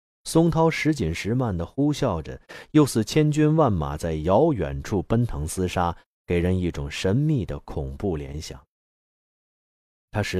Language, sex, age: Chinese, male, 30-49